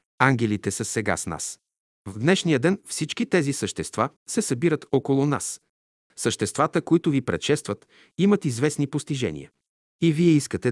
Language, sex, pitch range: Bulgarian, male, 115-165 Hz